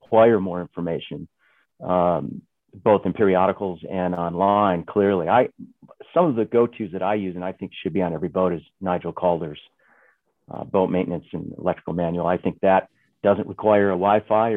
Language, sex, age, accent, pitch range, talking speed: English, male, 50-69, American, 85-100 Hz, 175 wpm